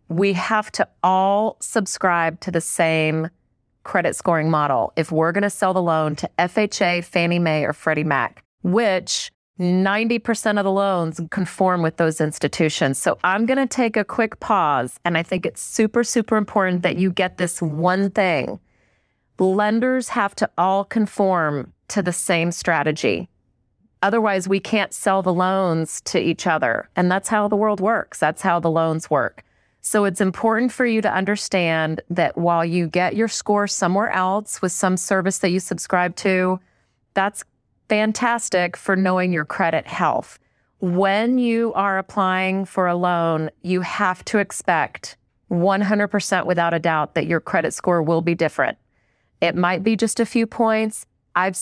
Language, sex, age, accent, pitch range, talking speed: English, female, 30-49, American, 170-210 Hz, 165 wpm